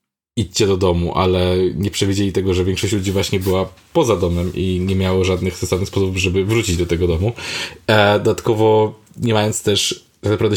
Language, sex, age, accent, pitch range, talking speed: Polish, male, 20-39, native, 95-110 Hz, 170 wpm